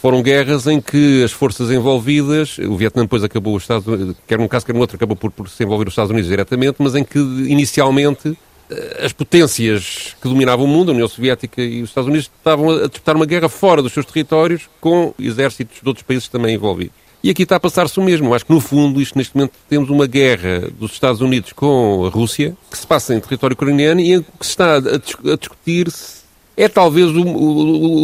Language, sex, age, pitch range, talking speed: Portuguese, male, 40-59, 120-155 Hz, 220 wpm